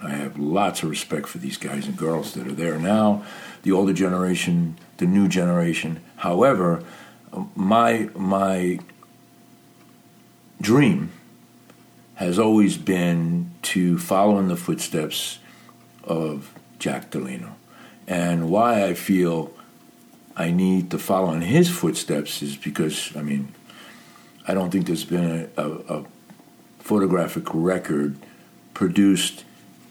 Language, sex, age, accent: English, male, 60-79, American